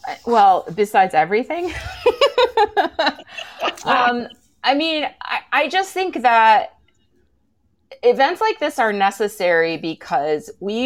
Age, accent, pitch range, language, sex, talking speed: 30-49, American, 155-230 Hz, English, female, 100 wpm